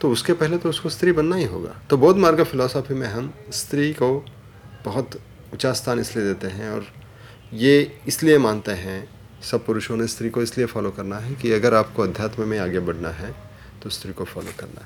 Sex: male